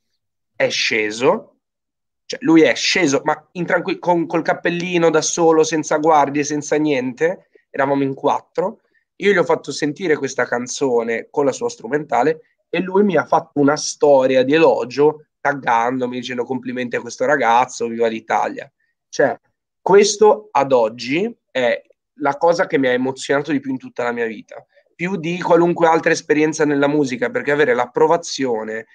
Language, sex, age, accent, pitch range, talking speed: Italian, male, 30-49, native, 130-170 Hz, 160 wpm